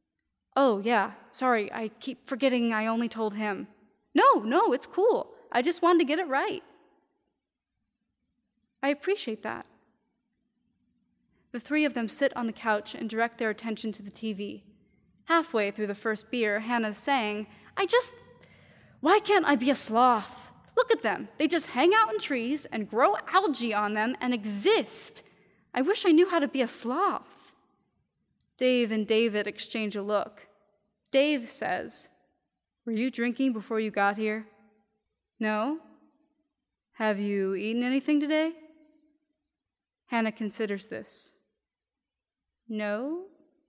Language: English